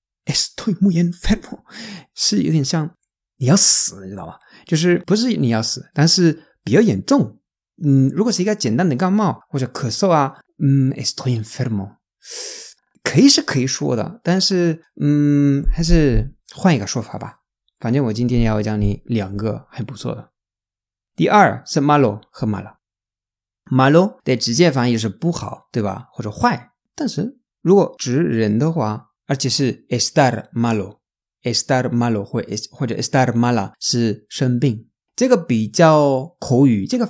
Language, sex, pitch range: Chinese, male, 115-175 Hz